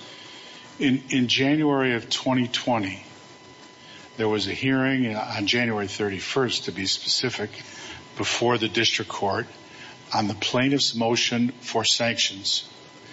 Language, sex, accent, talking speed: English, male, American, 115 wpm